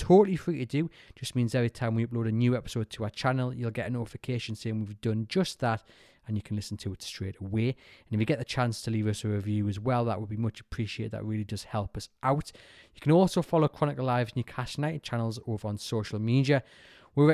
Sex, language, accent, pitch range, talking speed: male, English, British, 110-140 Hz, 245 wpm